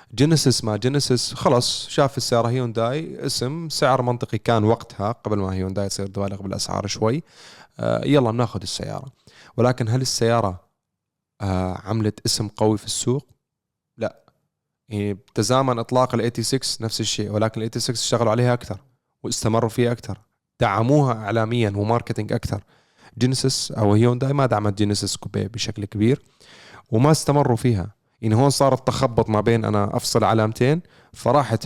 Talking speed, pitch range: 140 wpm, 105-130 Hz